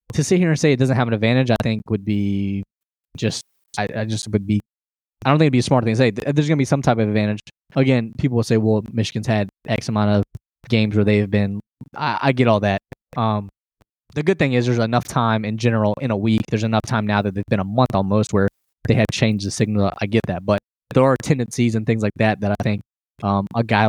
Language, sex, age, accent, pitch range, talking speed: English, male, 20-39, American, 105-125 Hz, 260 wpm